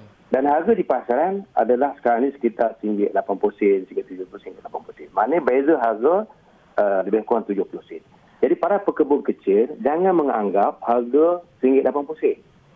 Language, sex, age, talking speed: Malay, male, 50-69, 120 wpm